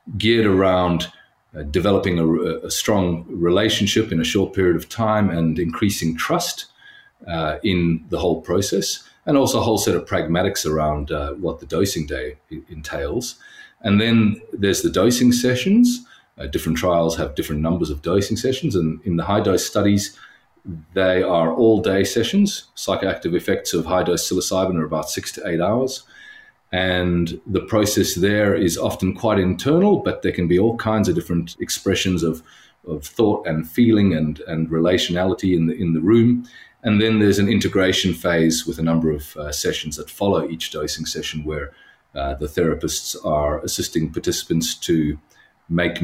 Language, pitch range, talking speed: English, 80-110 Hz, 170 wpm